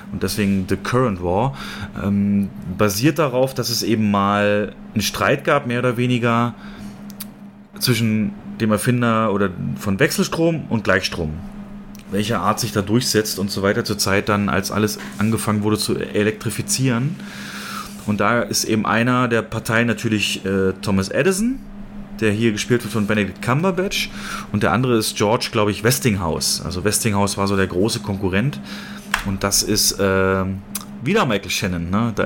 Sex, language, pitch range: male, German, 100-130 Hz